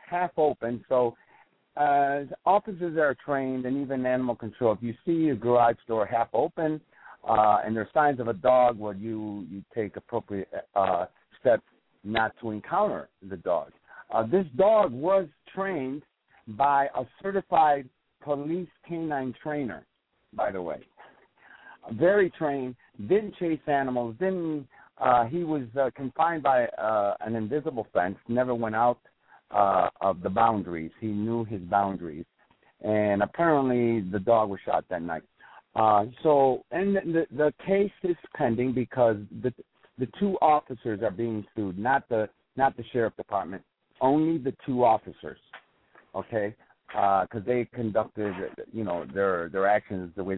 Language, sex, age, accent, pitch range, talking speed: English, male, 60-79, American, 110-150 Hz, 150 wpm